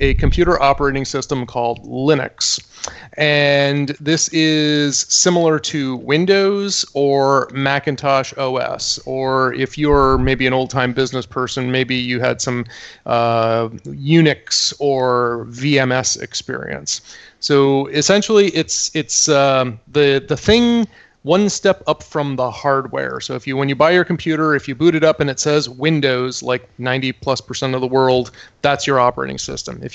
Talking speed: 150 wpm